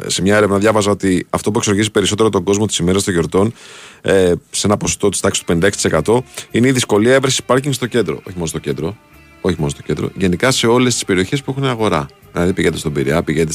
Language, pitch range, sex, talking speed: Greek, 95-140 Hz, male, 225 wpm